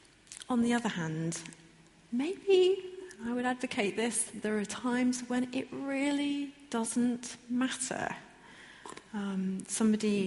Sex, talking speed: female, 110 wpm